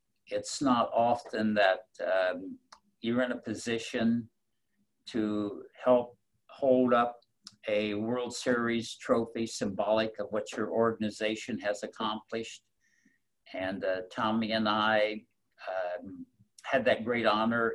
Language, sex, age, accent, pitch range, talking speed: English, male, 60-79, American, 105-125 Hz, 115 wpm